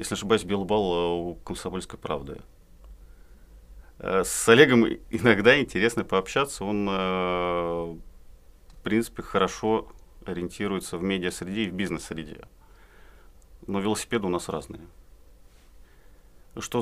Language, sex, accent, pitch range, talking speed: Russian, male, native, 85-110 Hz, 95 wpm